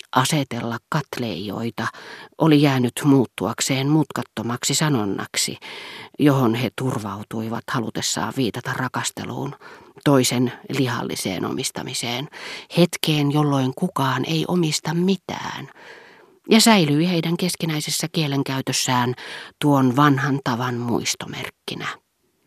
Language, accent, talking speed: Finnish, native, 85 wpm